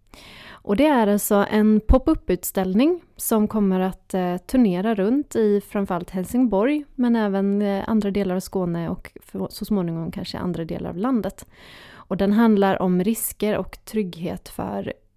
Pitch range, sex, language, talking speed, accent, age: 175-215 Hz, female, Swedish, 135 wpm, native, 30-49